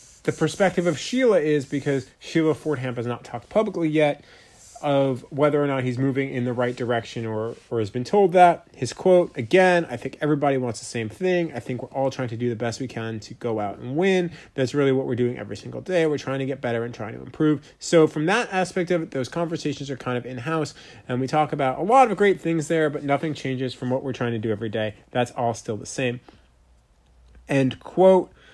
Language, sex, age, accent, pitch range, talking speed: English, male, 30-49, American, 125-160 Hz, 235 wpm